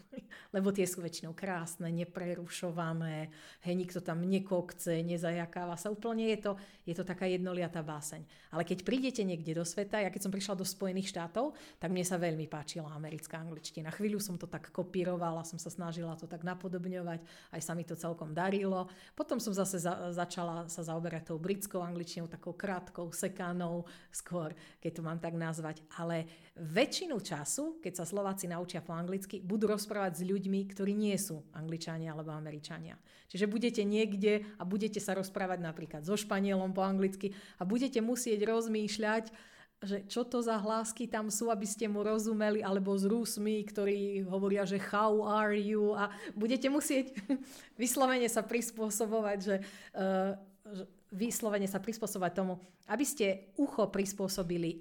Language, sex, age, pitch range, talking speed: Slovak, female, 40-59, 170-210 Hz, 160 wpm